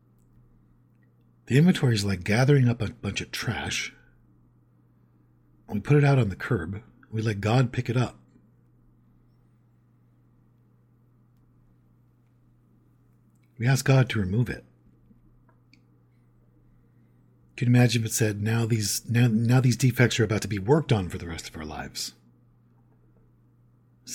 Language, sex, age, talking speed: English, male, 50-69, 135 wpm